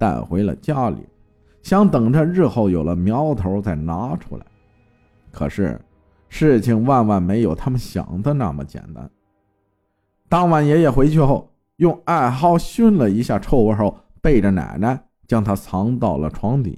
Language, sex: Chinese, male